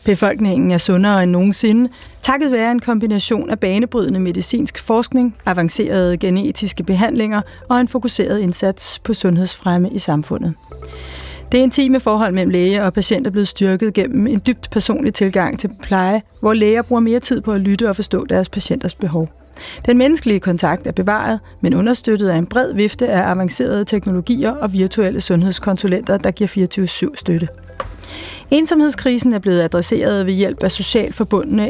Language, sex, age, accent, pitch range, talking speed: Danish, female, 30-49, native, 185-225 Hz, 160 wpm